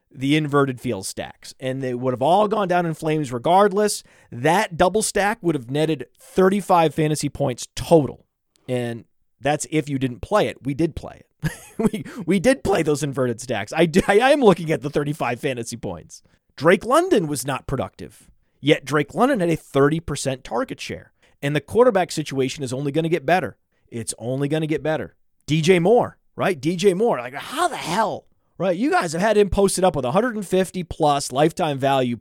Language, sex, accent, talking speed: English, male, American, 190 wpm